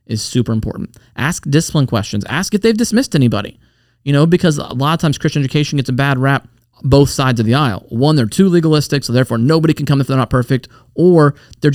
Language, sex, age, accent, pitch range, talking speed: English, male, 30-49, American, 120-155 Hz, 225 wpm